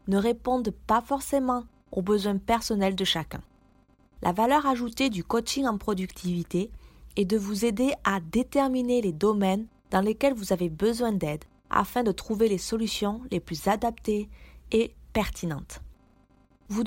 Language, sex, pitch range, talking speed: French, female, 195-250 Hz, 145 wpm